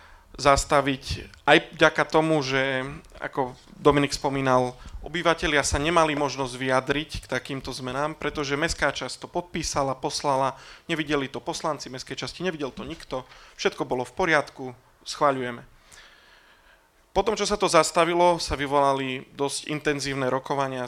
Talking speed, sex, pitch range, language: 130 wpm, male, 130-150 Hz, Slovak